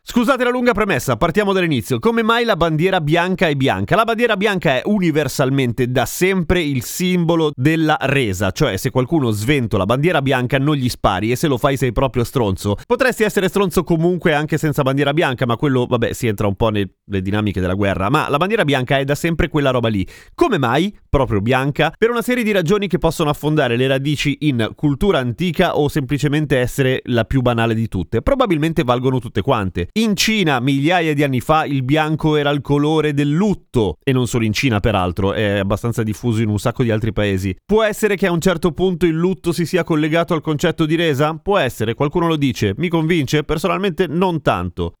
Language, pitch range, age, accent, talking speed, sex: Italian, 125-170 Hz, 30-49, native, 205 wpm, male